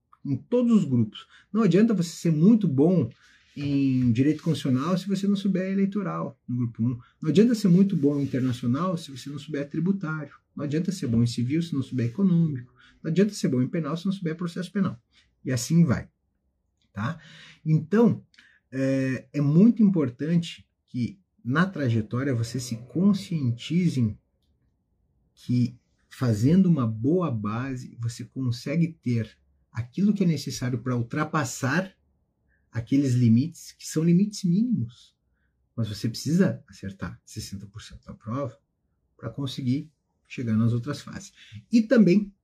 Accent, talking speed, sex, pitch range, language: Brazilian, 145 wpm, male, 115-170 Hz, Portuguese